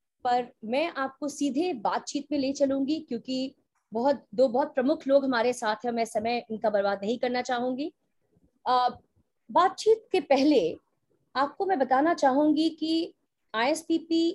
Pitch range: 245-320 Hz